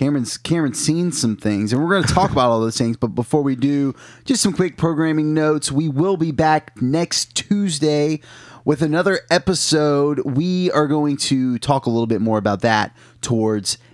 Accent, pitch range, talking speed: American, 115-140 Hz, 190 wpm